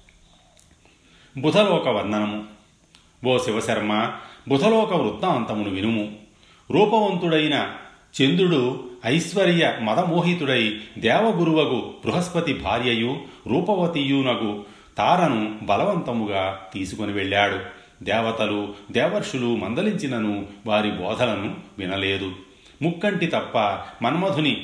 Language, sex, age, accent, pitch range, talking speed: Telugu, male, 40-59, native, 105-150 Hz, 65 wpm